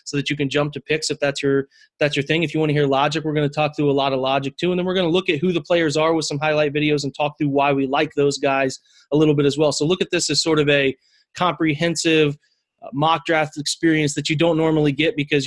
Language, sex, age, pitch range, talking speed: English, male, 20-39, 145-165 Hz, 295 wpm